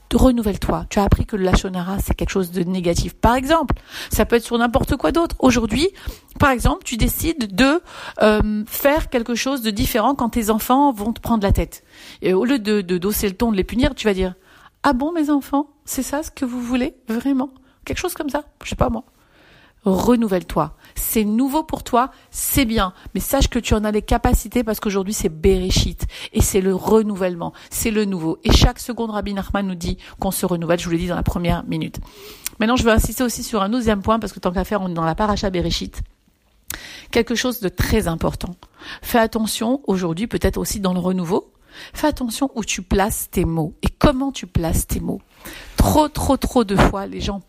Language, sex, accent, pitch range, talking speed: French, female, French, 195-255 Hz, 215 wpm